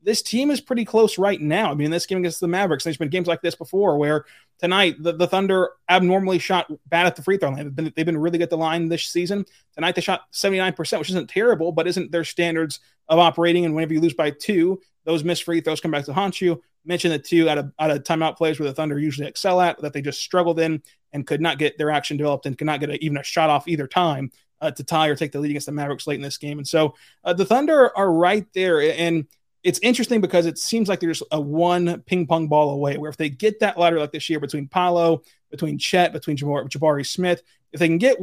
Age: 20-39